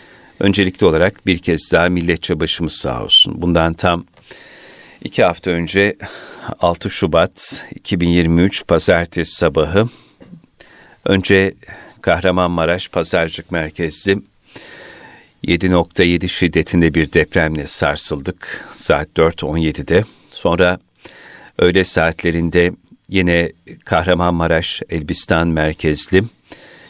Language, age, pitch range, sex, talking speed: Turkish, 40-59, 85-95 Hz, male, 85 wpm